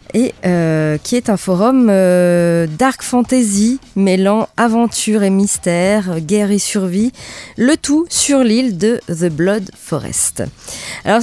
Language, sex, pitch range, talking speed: French, female, 175-245 Hz, 135 wpm